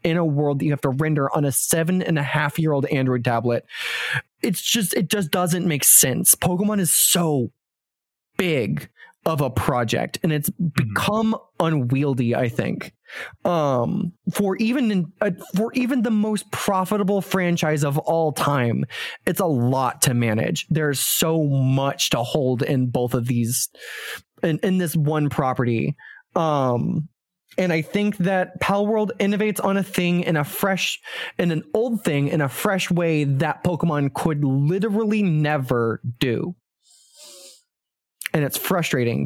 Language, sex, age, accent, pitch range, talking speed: English, male, 20-39, American, 140-185 Hz, 155 wpm